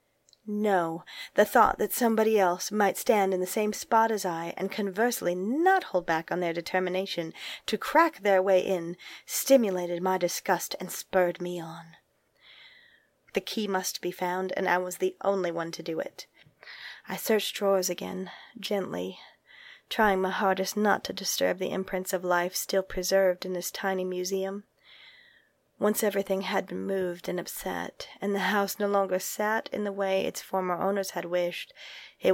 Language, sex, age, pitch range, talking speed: English, female, 30-49, 180-205 Hz, 170 wpm